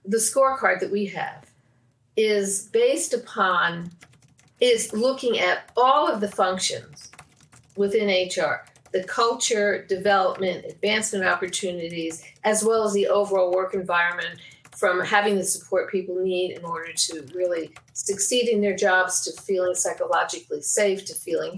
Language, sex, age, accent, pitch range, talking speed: English, female, 50-69, American, 180-230 Hz, 140 wpm